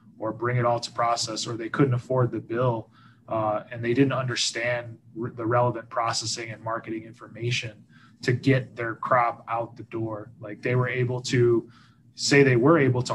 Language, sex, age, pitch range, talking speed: English, male, 20-39, 115-130 Hz, 185 wpm